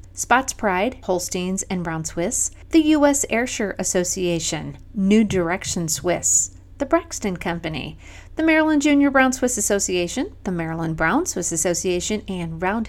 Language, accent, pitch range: English, American, 175-235 Hz